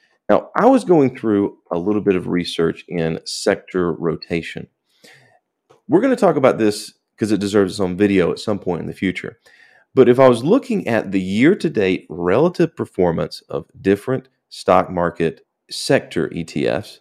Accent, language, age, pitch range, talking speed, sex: American, English, 40-59, 90-125 Hz, 160 wpm, male